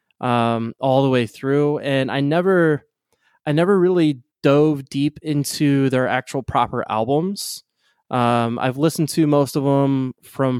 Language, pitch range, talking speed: English, 125-150 Hz, 145 wpm